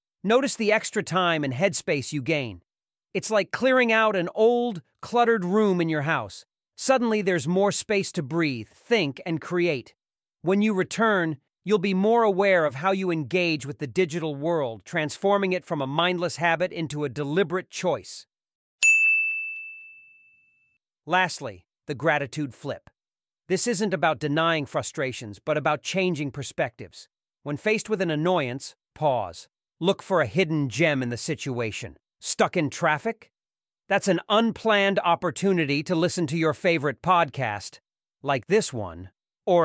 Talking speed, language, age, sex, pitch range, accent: 145 wpm, English, 40-59, male, 150-205 Hz, American